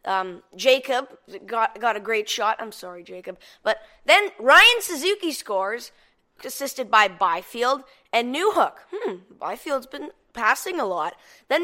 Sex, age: female, 10-29